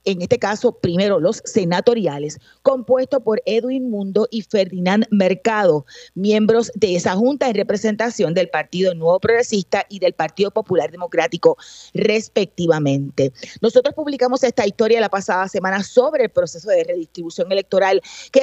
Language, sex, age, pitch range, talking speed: Spanish, female, 30-49, 185-245 Hz, 140 wpm